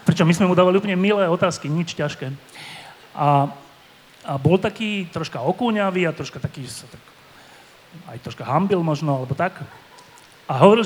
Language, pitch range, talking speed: Slovak, 145-180 Hz, 165 wpm